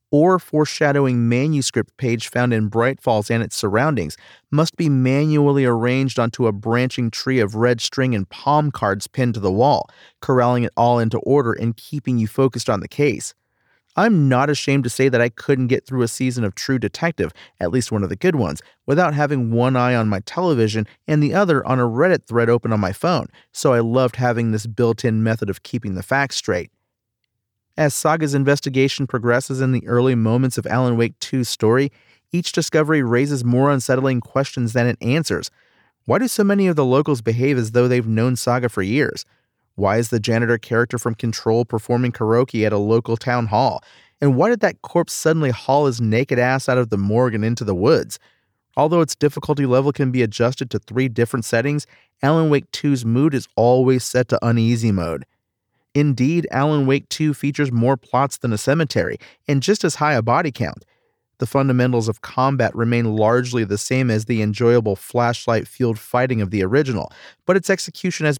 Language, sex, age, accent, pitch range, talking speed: English, male, 30-49, American, 115-140 Hz, 195 wpm